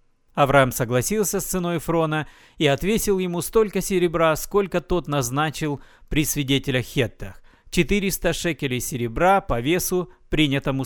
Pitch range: 130-180 Hz